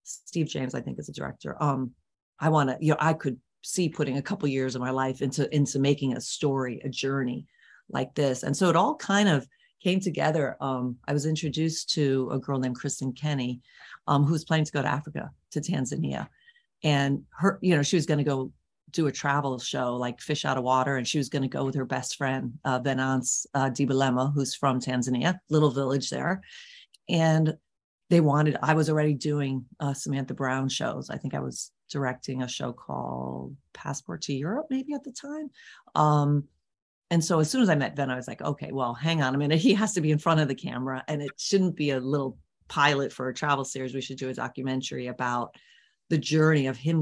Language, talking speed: English, 215 wpm